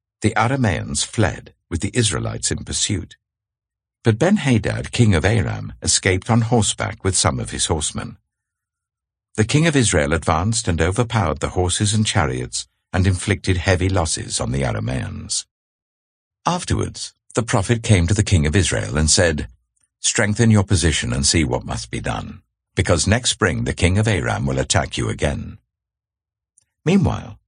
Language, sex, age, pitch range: English, male, 60-79, 90-115 Hz